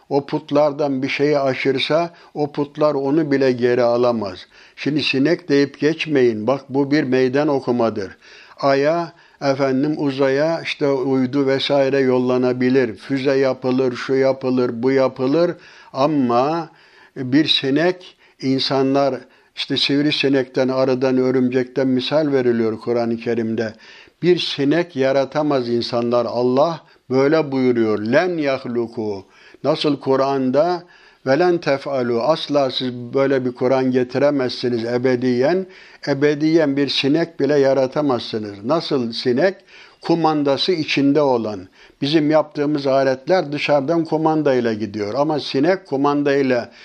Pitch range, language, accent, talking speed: 130-150 Hz, Turkish, native, 110 wpm